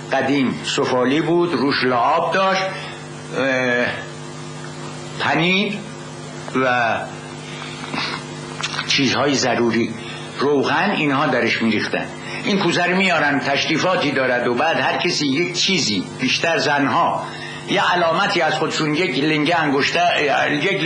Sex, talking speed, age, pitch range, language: male, 100 wpm, 60-79, 140-205 Hz, Persian